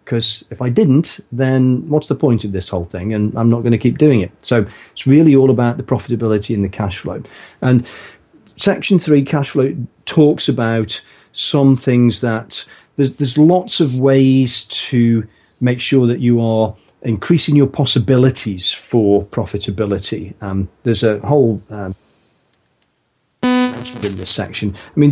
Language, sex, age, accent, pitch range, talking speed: English, male, 40-59, British, 110-145 Hz, 160 wpm